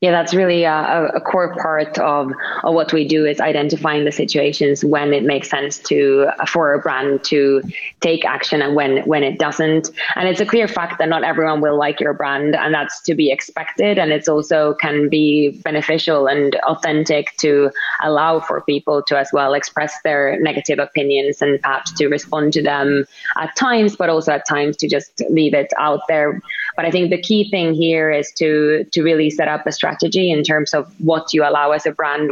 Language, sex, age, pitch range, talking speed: English, female, 20-39, 145-165 Hz, 205 wpm